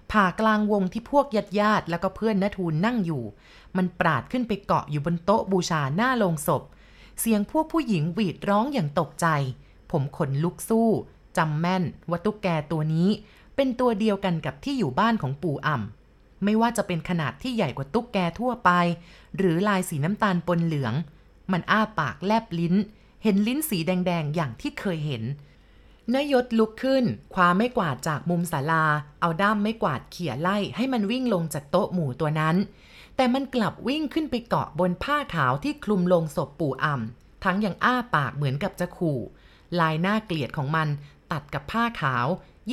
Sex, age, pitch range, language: female, 20-39, 160-215 Hz, Thai